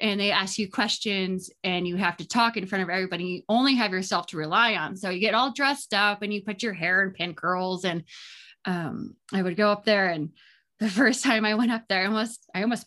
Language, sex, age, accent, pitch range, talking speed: English, female, 20-39, American, 195-265 Hz, 250 wpm